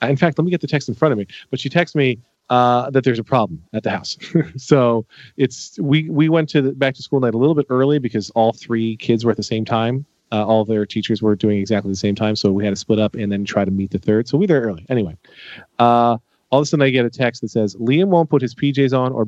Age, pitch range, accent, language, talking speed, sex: 30-49, 110-135 Hz, American, English, 290 wpm, male